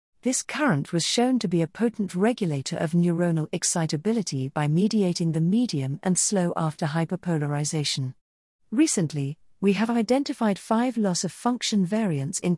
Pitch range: 160-220 Hz